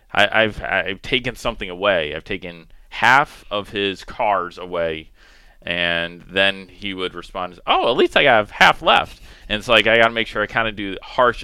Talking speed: 195 wpm